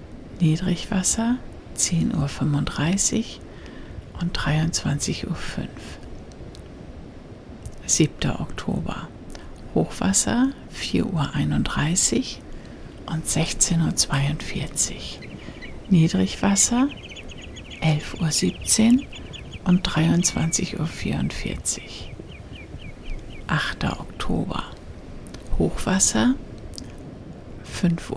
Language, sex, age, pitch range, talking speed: German, female, 60-79, 160-205 Hz, 50 wpm